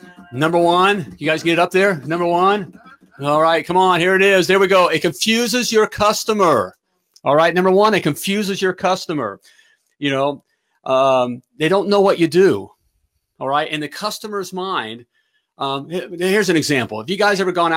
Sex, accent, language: male, American, English